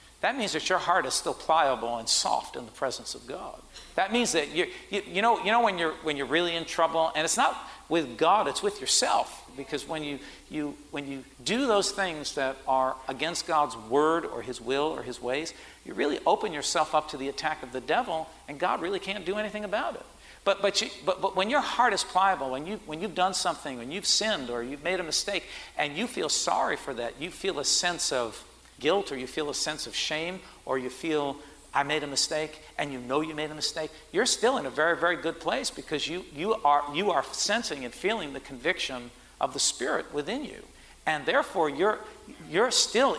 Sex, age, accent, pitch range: male, 50-69, American, 145-185 Hz